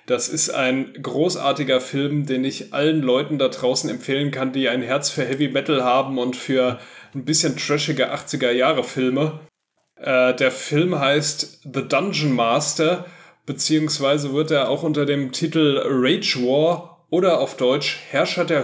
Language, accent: German, German